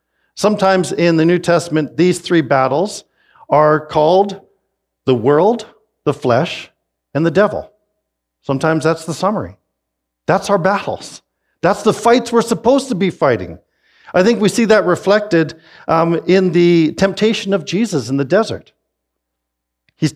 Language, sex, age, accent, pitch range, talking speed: English, male, 50-69, American, 130-200 Hz, 145 wpm